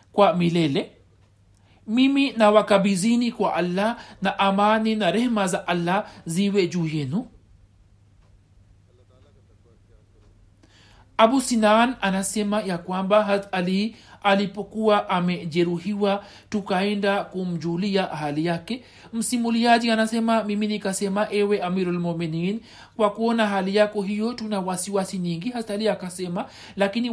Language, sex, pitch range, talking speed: Swahili, male, 180-220 Hz, 100 wpm